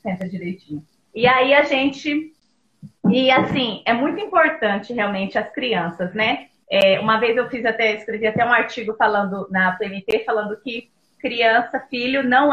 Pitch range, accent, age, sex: 215-260 Hz, Brazilian, 20-39, female